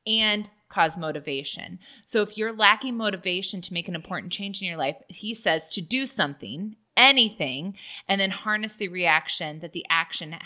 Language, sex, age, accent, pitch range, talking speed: English, female, 20-39, American, 170-220 Hz, 170 wpm